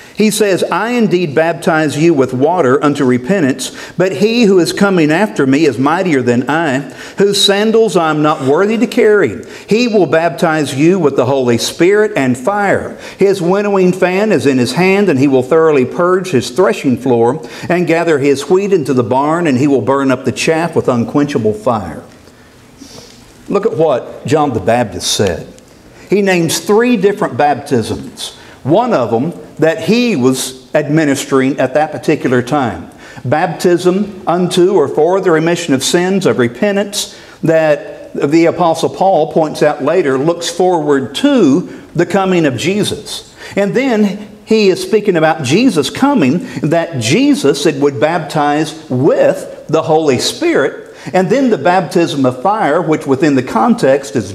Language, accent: English, American